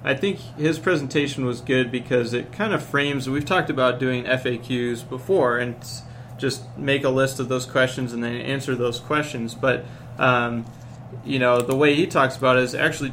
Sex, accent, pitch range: male, American, 125-130 Hz